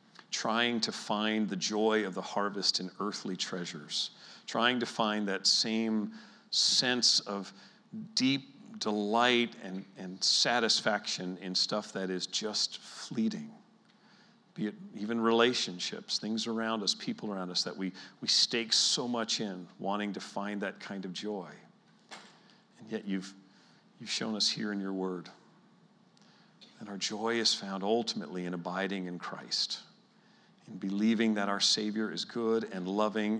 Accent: American